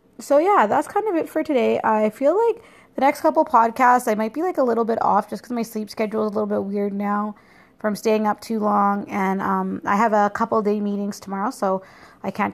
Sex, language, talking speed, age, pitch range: female, English, 245 wpm, 20-39, 200-285 Hz